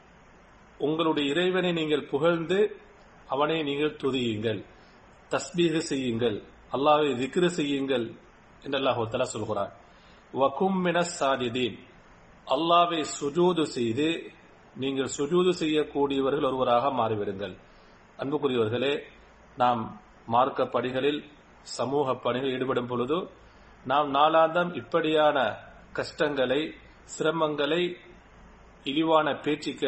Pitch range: 130-160 Hz